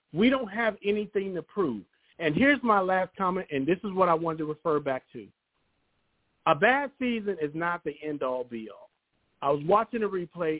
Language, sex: English, male